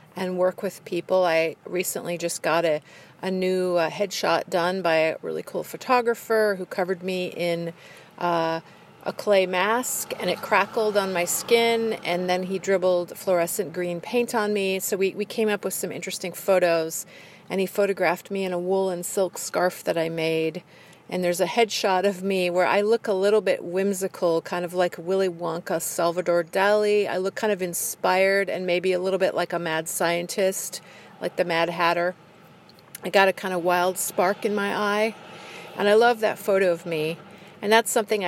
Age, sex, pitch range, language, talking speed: 40-59, female, 175-200 Hz, English, 190 wpm